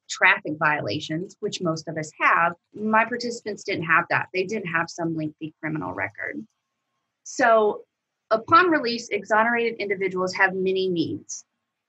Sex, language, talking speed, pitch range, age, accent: female, English, 135 wpm, 170-205 Hz, 30-49, American